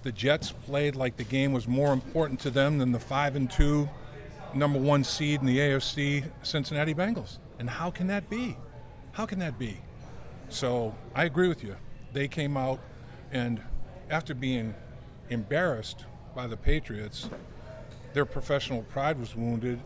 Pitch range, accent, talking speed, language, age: 120-145 Hz, American, 160 wpm, English, 50-69